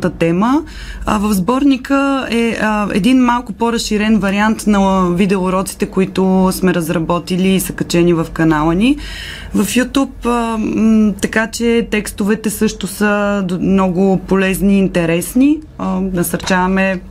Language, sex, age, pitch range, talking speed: Bulgarian, female, 20-39, 175-215 Hz, 110 wpm